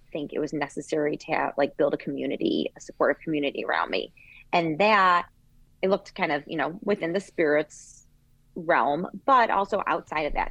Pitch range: 145-175 Hz